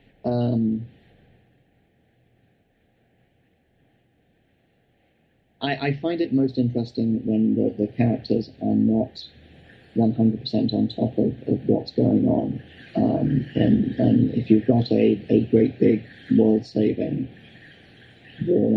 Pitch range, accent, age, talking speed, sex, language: 110-120 Hz, British, 30-49, 115 wpm, male, English